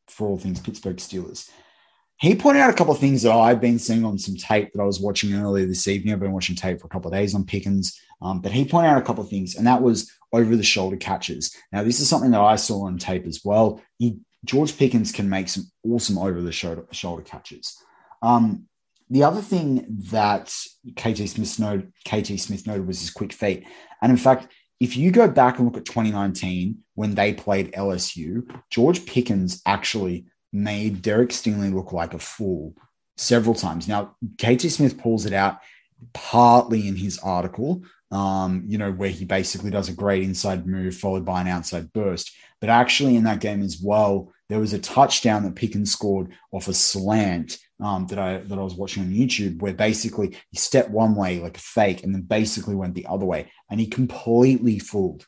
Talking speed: 205 wpm